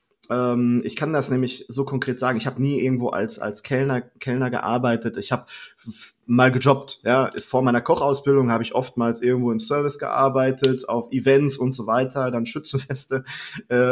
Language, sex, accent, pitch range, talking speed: German, male, German, 120-140 Hz, 160 wpm